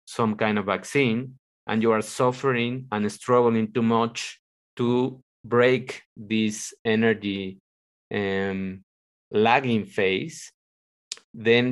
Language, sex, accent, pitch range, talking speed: English, male, Mexican, 105-125 Hz, 100 wpm